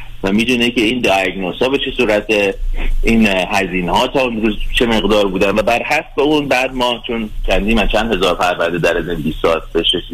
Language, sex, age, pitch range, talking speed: Persian, male, 30-49, 100-135 Hz, 215 wpm